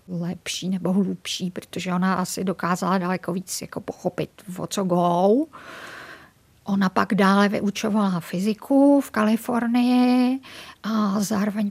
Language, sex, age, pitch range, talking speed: Czech, female, 50-69, 200-225 Hz, 120 wpm